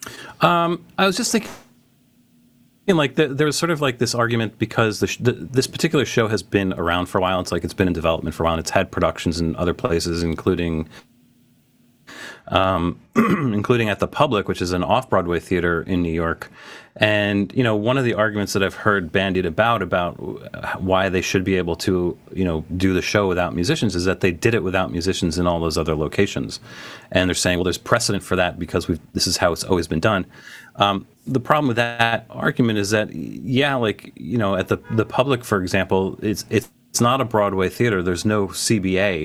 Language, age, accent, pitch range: English, 30-49, American, 85-105 Hz